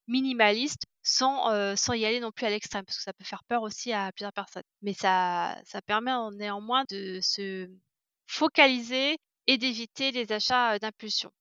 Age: 20-39